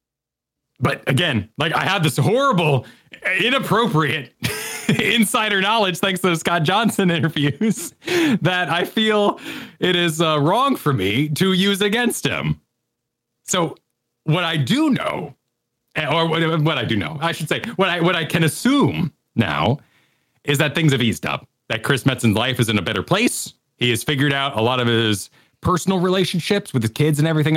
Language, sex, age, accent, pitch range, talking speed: English, male, 30-49, American, 120-175 Hz, 170 wpm